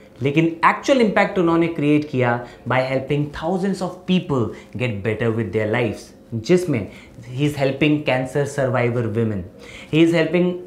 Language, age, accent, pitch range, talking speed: Hindi, 30-49, native, 115-170 Hz, 145 wpm